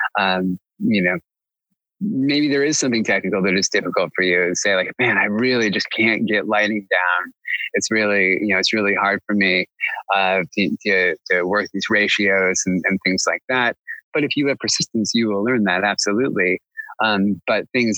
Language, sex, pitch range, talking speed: English, male, 95-120 Hz, 190 wpm